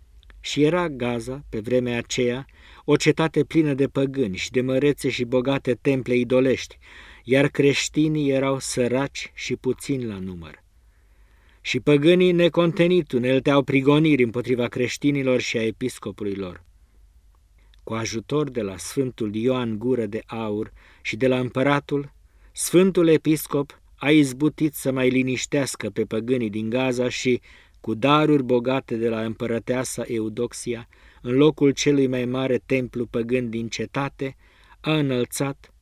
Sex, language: male, Romanian